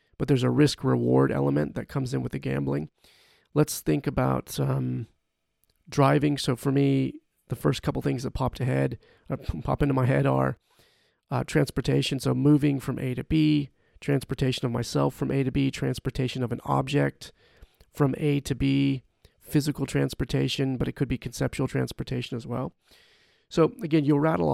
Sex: male